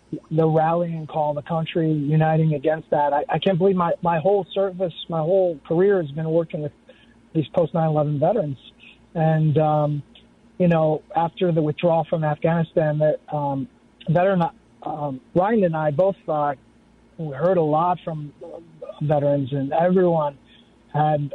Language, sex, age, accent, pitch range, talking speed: English, male, 40-59, American, 135-160 Hz, 150 wpm